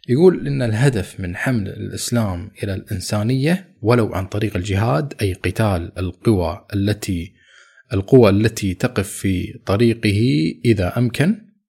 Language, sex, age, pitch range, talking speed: Arabic, male, 20-39, 100-125 Hz, 120 wpm